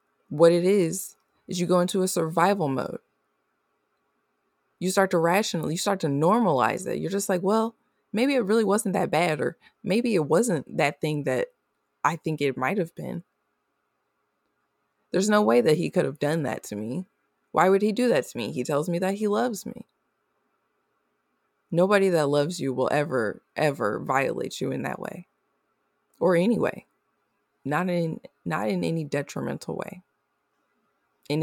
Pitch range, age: 140-180 Hz, 20-39